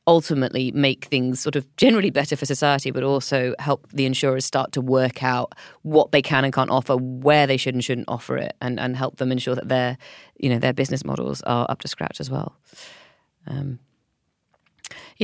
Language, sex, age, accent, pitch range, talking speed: English, female, 30-49, British, 130-170 Hz, 195 wpm